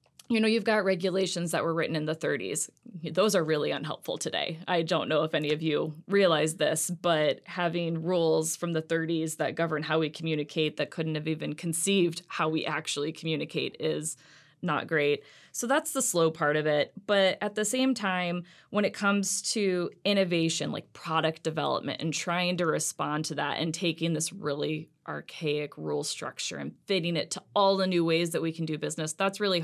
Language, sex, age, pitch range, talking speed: English, female, 20-39, 155-185 Hz, 195 wpm